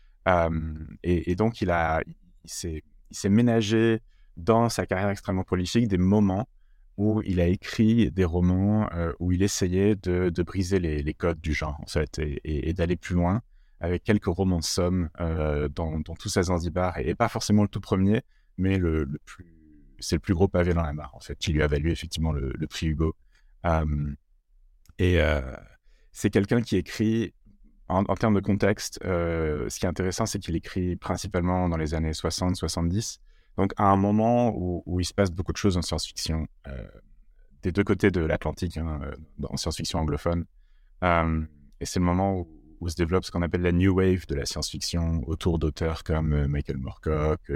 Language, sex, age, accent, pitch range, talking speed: French, male, 30-49, French, 80-95 Hz, 195 wpm